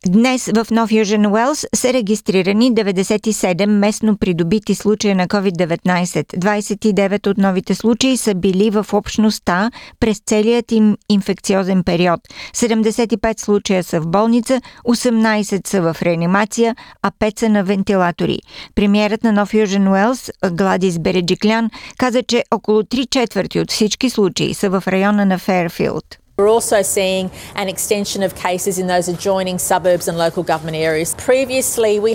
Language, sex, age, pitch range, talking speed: Bulgarian, female, 50-69, 190-225 Hz, 145 wpm